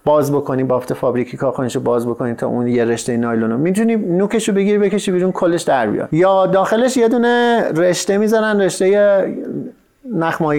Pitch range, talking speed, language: 140-185 Hz, 170 wpm, Persian